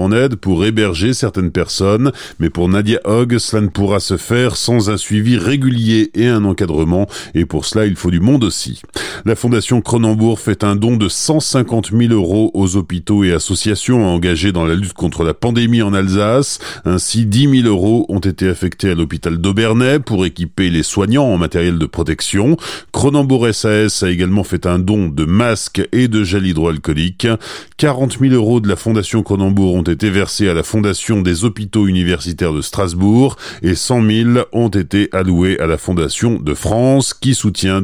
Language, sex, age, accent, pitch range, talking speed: French, male, 40-59, French, 90-120 Hz, 185 wpm